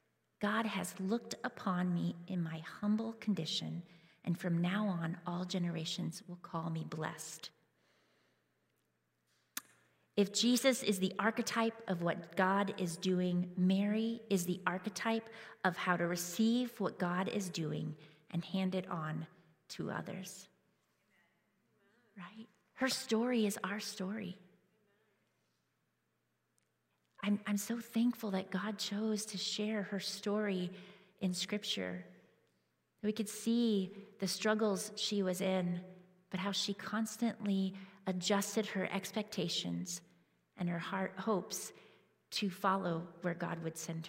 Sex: female